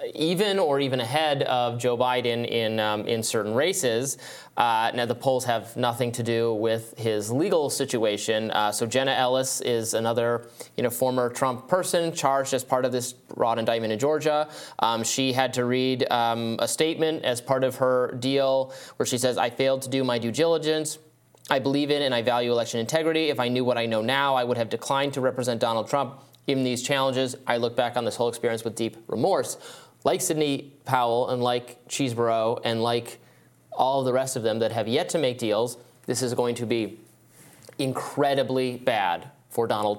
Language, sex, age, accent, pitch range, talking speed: English, male, 20-39, American, 115-135 Hz, 200 wpm